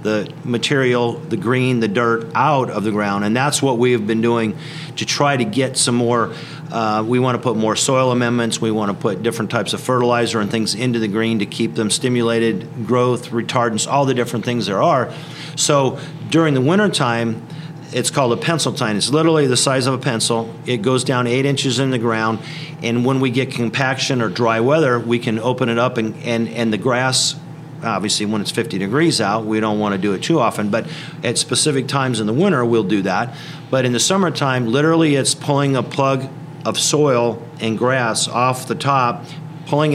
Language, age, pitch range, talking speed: English, 50-69, 115-145 Hz, 210 wpm